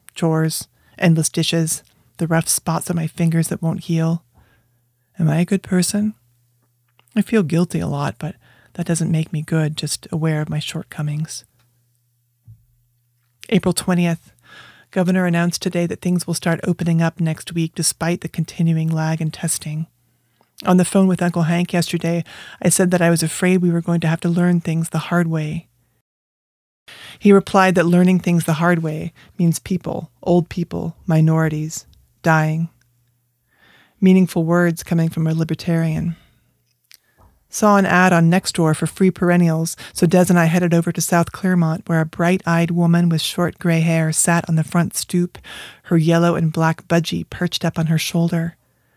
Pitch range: 155-175 Hz